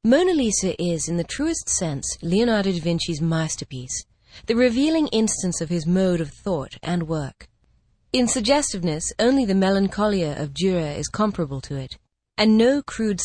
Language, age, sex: English, 30-49, female